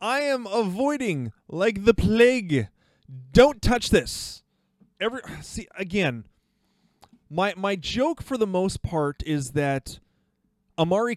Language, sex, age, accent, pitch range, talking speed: English, male, 30-49, American, 135-195 Hz, 115 wpm